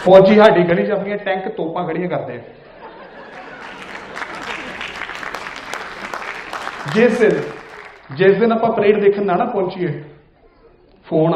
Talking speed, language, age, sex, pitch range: 85 wpm, Punjabi, 30-49, male, 160-210 Hz